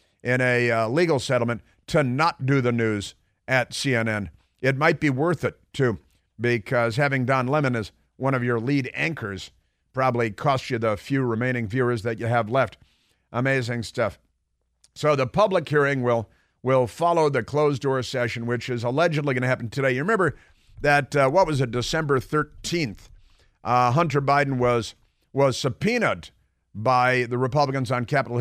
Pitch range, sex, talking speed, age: 120-145 Hz, male, 165 wpm, 50-69